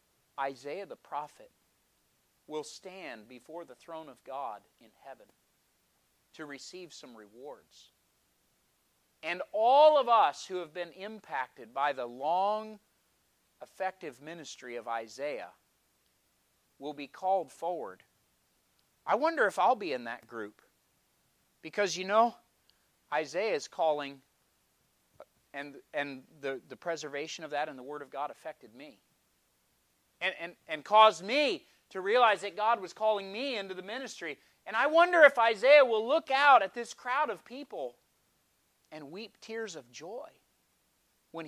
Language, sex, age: English, male, 40-59